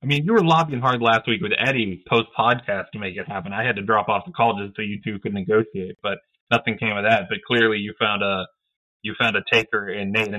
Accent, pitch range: American, 100-125 Hz